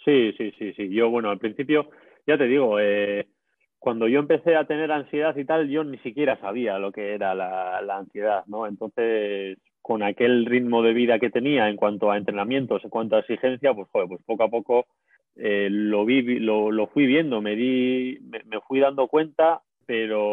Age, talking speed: 30-49, 200 wpm